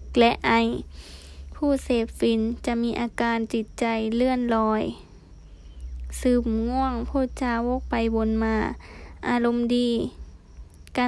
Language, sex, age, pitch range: Thai, female, 10-29, 220-245 Hz